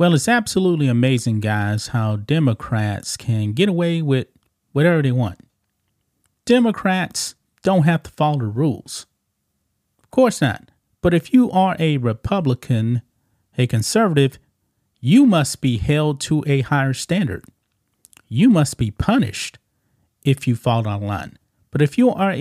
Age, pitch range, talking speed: 30-49, 115-180 Hz, 145 wpm